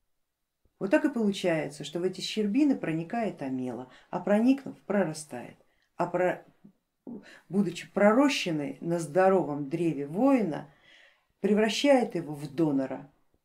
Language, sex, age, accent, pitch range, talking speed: Russian, female, 50-69, native, 155-215 Hz, 110 wpm